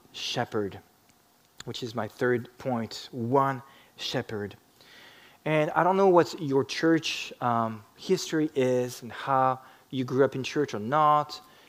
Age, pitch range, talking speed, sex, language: 20-39, 120-165 Hz, 140 wpm, male, English